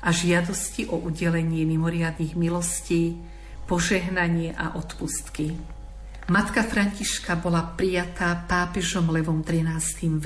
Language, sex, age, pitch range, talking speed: Slovak, female, 50-69, 165-190 Hz, 100 wpm